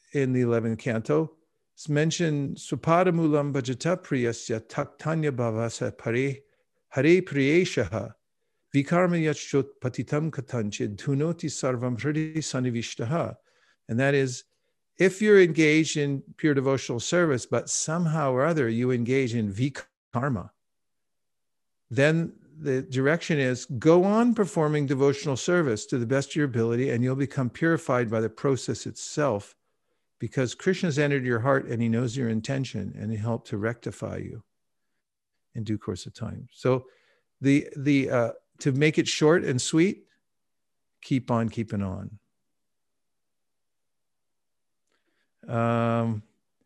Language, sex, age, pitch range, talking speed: English, male, 50-69, 120-155 Hz, 105 wpm